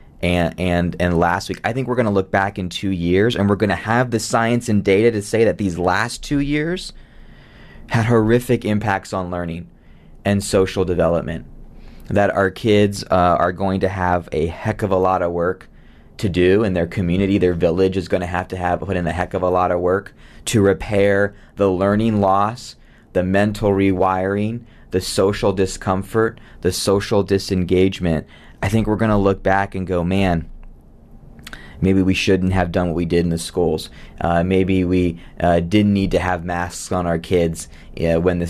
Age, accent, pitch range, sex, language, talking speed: 20-39, American, 90-105 Hz, male, English, 190 wpm